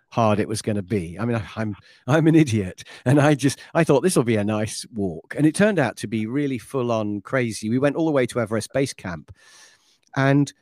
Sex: male